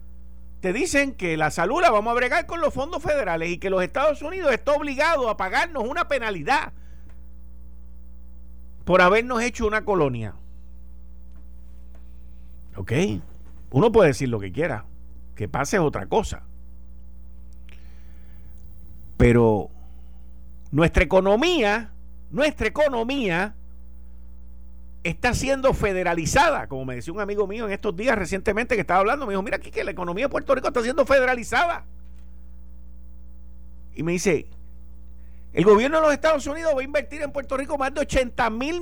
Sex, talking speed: male, 140 wpm